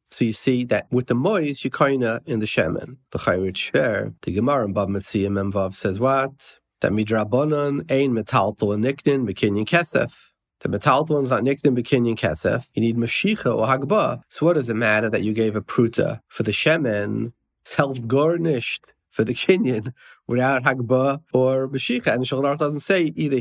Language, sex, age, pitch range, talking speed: English, male, 40-59, 110-140 Hz, 180 wpm